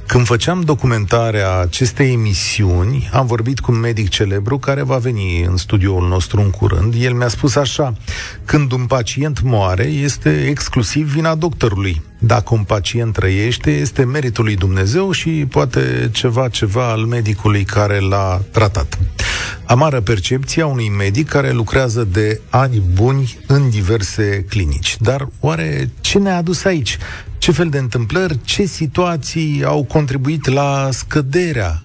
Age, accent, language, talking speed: 40-59, native, Romanian, 145 wpm